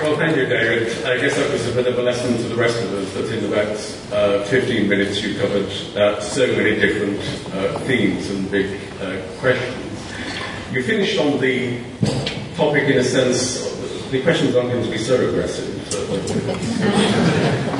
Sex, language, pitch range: male, English, 100-125 Hz